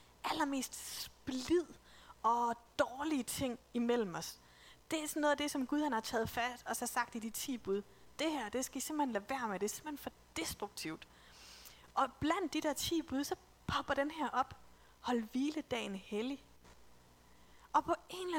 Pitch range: 225-295 Hz